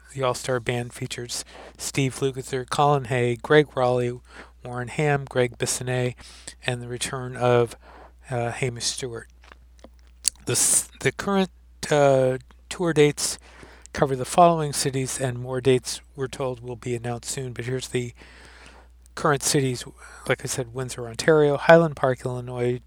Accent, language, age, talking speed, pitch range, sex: American, English, 50-69, 135 wpm, 125-140 Hz, male